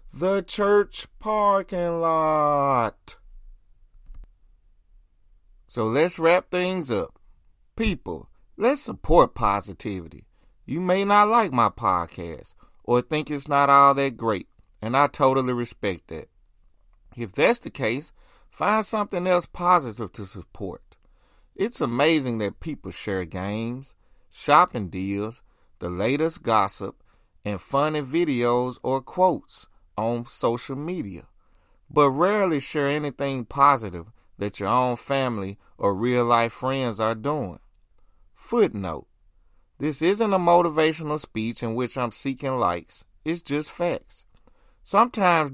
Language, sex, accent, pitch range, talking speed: English, male, American, 100-160 Hz, 120 wpm